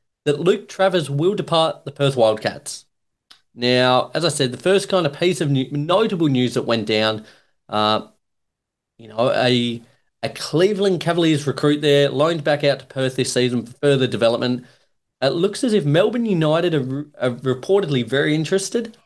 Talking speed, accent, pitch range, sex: 170 wpm, Australian, 125-160 Hz, male